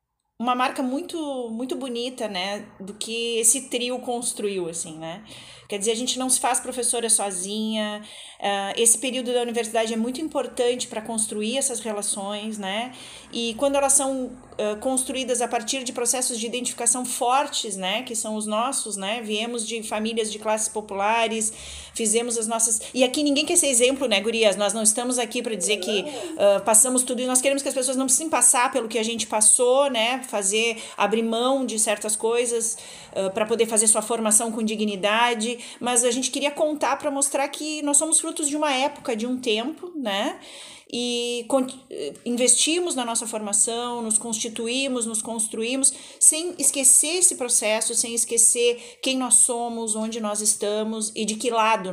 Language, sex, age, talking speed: Portuguese, female, 30-49, 170 wpm